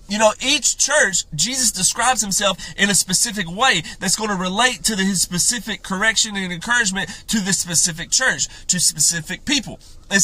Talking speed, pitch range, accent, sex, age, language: 175 wpm, 185-240 Hz, American, male, 30-49, English